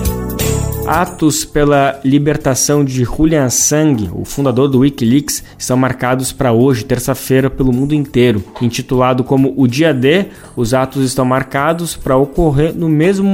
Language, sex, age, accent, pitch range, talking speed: Portuguese, male, 20-39, Brazilian, 130-155 Hz, 140 wpm